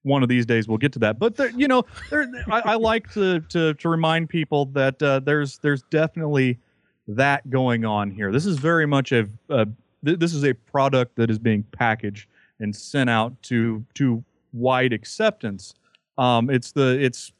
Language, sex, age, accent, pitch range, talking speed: English, male, 30-49, American, 115-145 Hz, 195 wpm